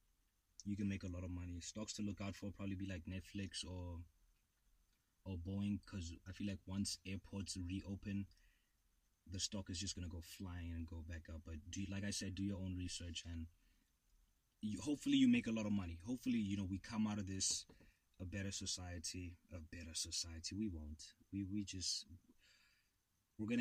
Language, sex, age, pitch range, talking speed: English, male, 20-39, 85-100 Hz, 200 wpm